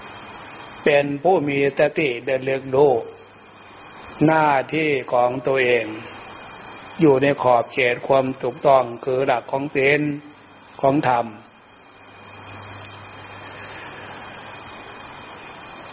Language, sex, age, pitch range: Thai, male, 60-79, 125-150 Hz